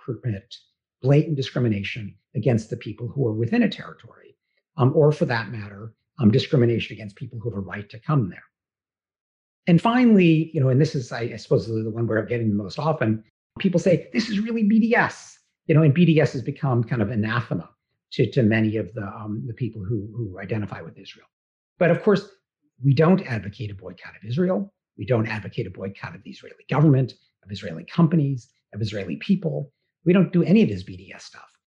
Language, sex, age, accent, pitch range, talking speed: English, male, 50-69, American, 110-155 Hz, 200 wpm